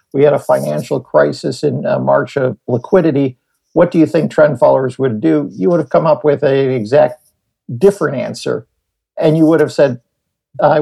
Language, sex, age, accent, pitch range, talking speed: English, male, 50-69, American, 135-160 Hz, 185 wpm